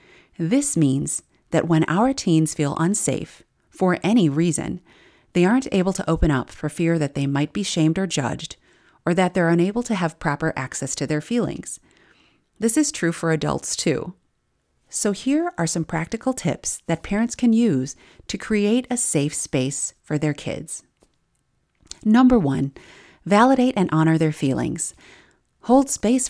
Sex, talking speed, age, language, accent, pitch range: female, 160 wpm, 40-59, English, American, 155-215 Hz